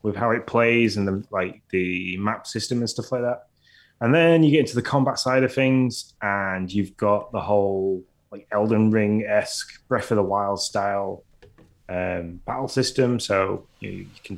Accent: British